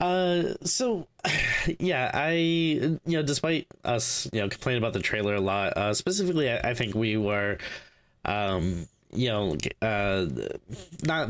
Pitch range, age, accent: 100-120 Hz, 20-39, American